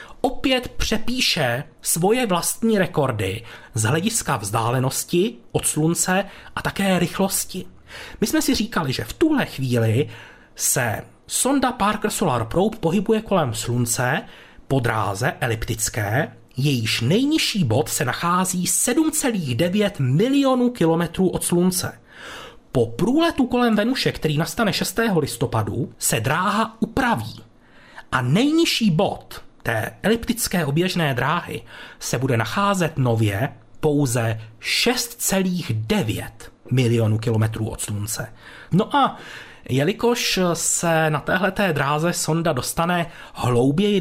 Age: 30-49